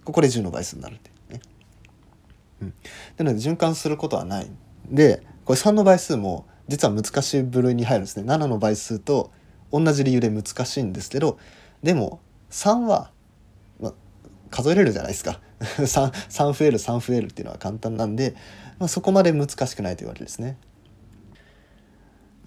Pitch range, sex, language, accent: 100-135 Hz, male, Japanese, native